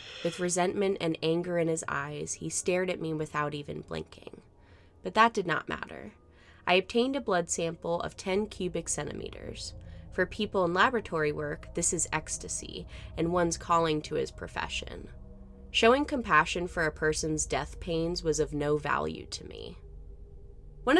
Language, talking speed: English, 160 wpm